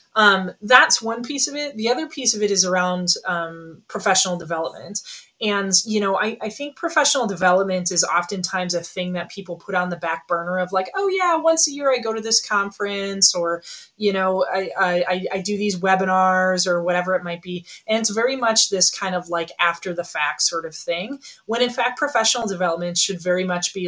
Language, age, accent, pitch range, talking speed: English, 20-39, American, 175-210 Hz, 210 wpm